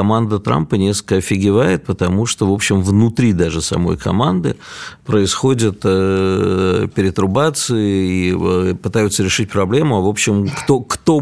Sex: male